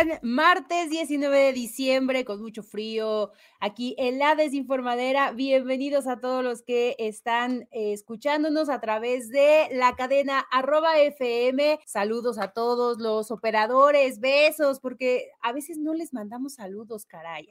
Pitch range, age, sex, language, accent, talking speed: 215-290 Hz, 30-49, female, English, Mexican, 130 wpm